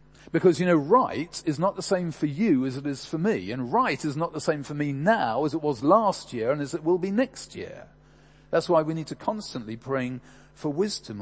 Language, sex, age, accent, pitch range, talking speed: English, male, 40-59, British, 125-160 Hz, 240 wpm